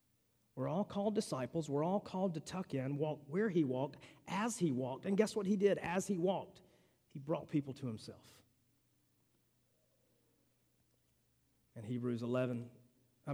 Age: 40-59